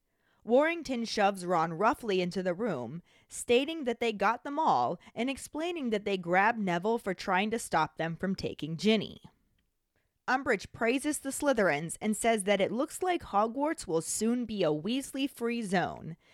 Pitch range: 185-255 Hz